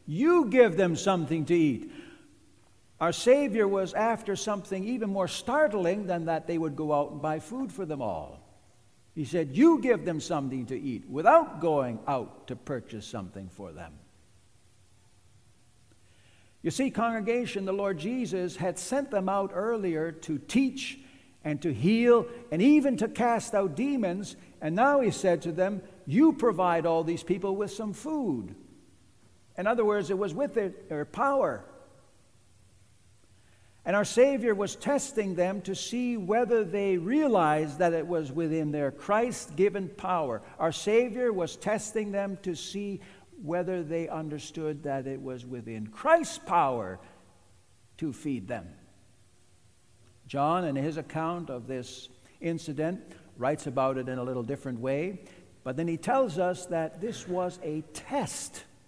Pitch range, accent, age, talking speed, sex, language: 130-210 Hz, American, 60-79, 150 wpm, male, English